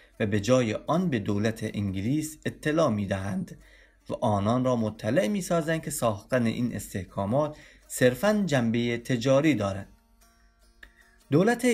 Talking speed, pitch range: 125 wpm, 110-165 Hz